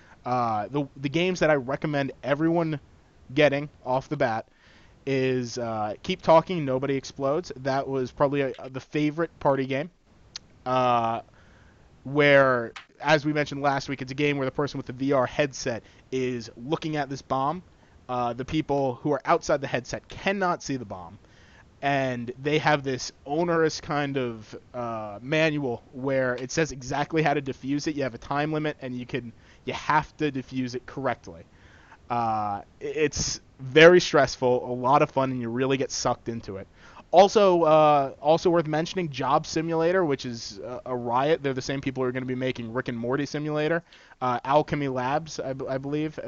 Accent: American